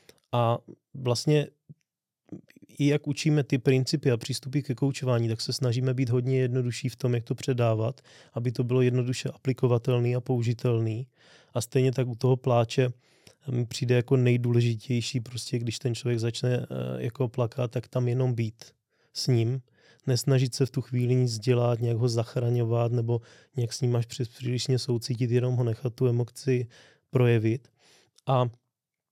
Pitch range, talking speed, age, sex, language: 115-130 Hz, 155 wpm, 20-39, male, Czech